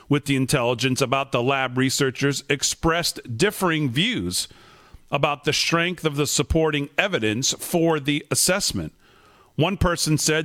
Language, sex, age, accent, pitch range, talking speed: English, male, 50-69, American, 130-155 Hz, 130 wpm